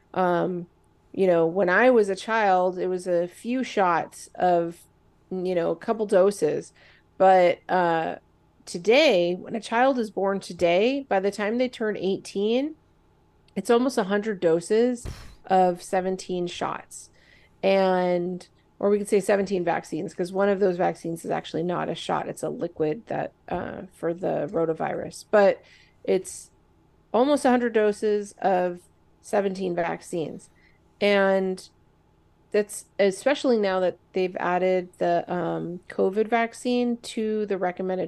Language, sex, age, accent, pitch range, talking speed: English, female, 30-49, American, 180-215 Hz, 140 wpm